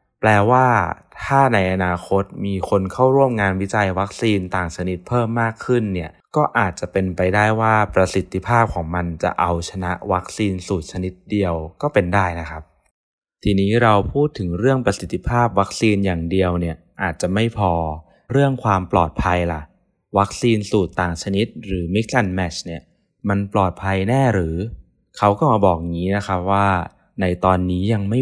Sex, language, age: male, Thai, 20-39